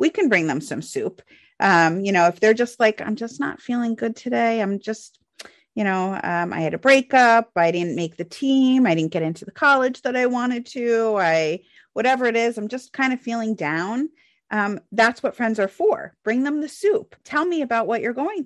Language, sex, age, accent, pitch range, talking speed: English, female, 30-49, American, 170-245 Hz, 225 wpm